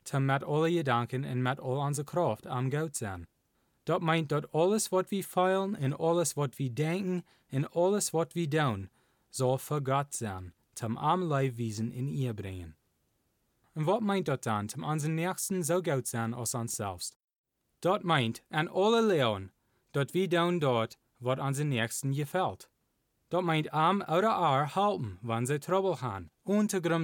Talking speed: 165 wpm